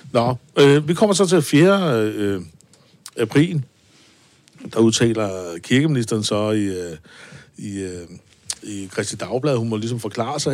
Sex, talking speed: male, 135 wpm